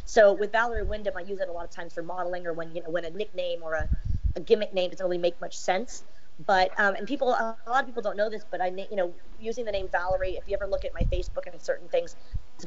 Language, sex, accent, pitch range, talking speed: English, female, American, 175-210 Hz, 290 wpm